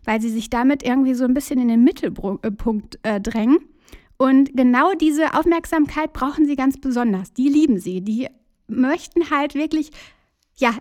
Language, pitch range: German, 230-305 Hz